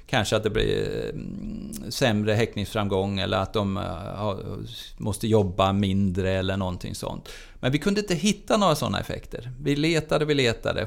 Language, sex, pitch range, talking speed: English, male, 110-145 Hz, 150 wpm